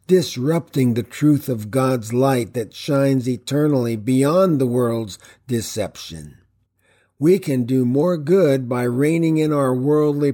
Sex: male